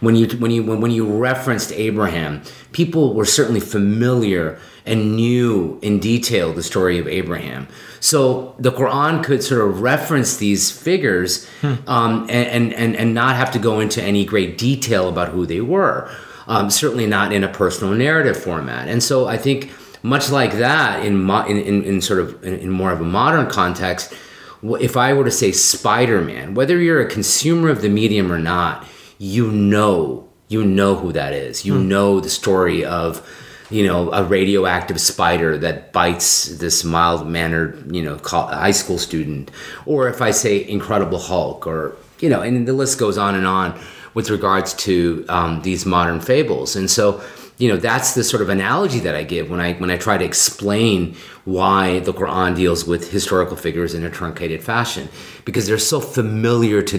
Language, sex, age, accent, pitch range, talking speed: English, male, 30-49, American, 90-120 Hz, 180 wpm